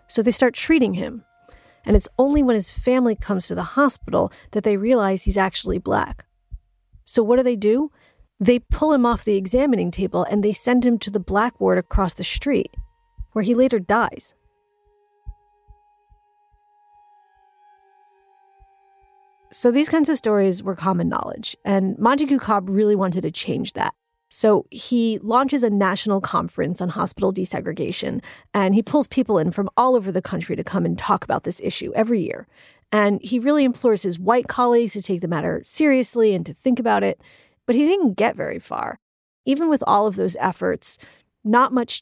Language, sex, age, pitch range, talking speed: English, female, 30-49, 190-265 Hz, 175 wpm